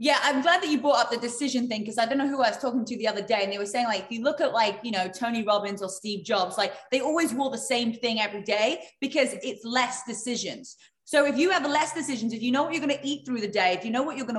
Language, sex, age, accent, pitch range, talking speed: English, female, 20-39, British, 220-280 Hz, 315 wpm